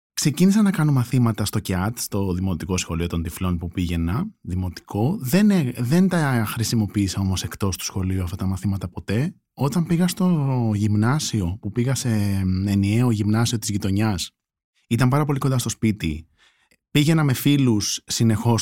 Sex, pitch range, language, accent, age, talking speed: male, 95-135 Hz, Greek, native, 20-39, 150 wpm